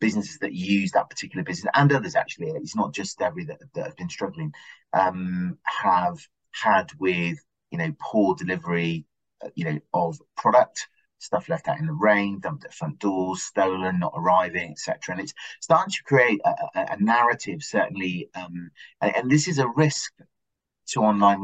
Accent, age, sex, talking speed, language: British, 30-49, male, 175 wpm, English